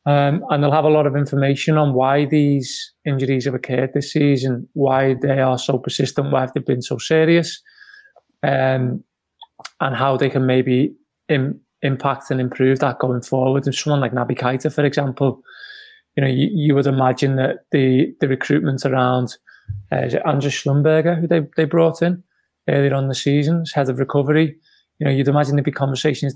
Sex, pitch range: male, 130-150 Hz